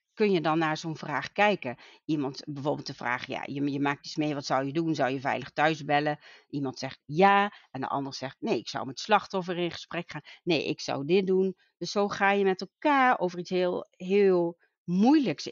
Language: Dutch